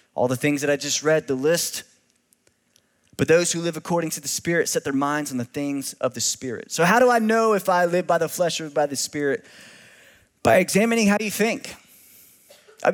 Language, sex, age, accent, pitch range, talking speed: English, male, 20-39, American, 135-190 Hz, 225 wpm